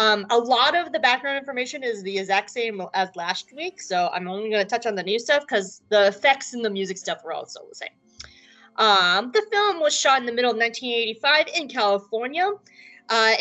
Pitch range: 205-280 Hz